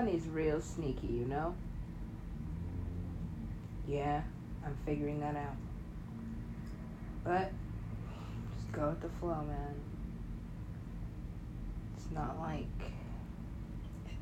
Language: English